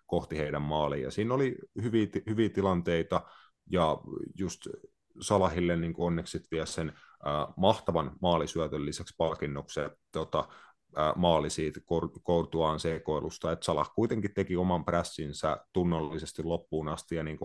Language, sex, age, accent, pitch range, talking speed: Finnish, male, 30-49, native, 75-90 Hz, 130 wpm